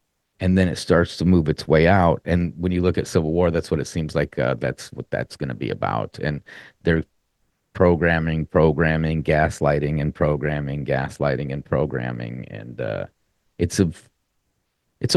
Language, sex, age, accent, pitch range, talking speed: English, male, 30-49, American, 85-110 Hz, 175 wpm